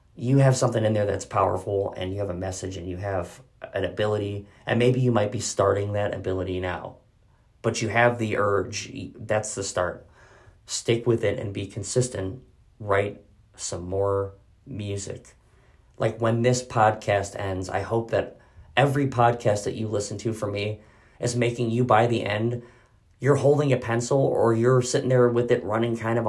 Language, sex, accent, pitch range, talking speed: English, male, American, 95-120 Hz, 180 wpm